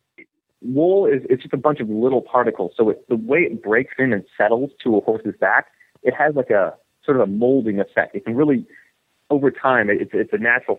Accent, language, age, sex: American, English, 30-49, male